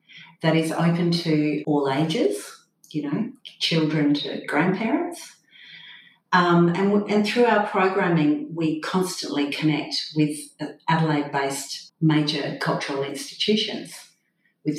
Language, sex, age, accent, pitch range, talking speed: English, female, 40-59, Australian, 145-175 Hz, 105 wpm